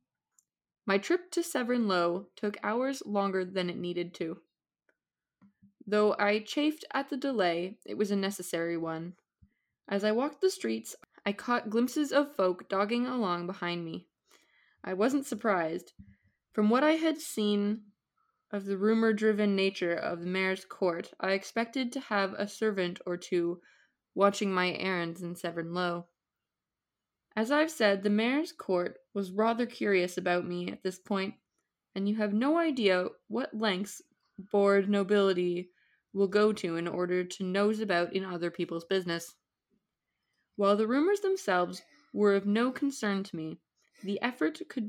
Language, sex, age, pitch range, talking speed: English, female, 20-39, 180-230 Hz, 155 wpm